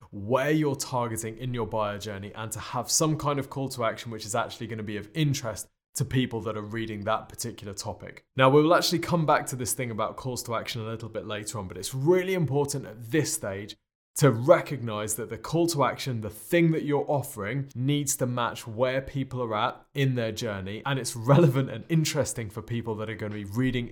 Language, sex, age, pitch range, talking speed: English, male, 20-39, 110-140 Hz, 230 wpm